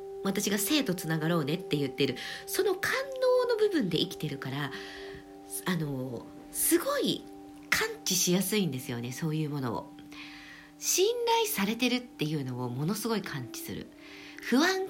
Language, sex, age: Japanese, female, 50-69